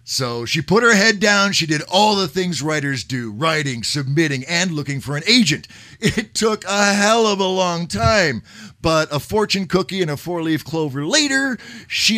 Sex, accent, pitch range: male, American, 130-190 Hz